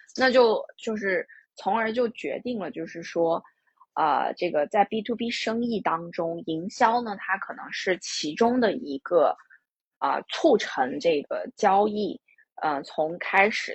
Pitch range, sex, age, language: 185-275 Hz, female, 20-39, Chinese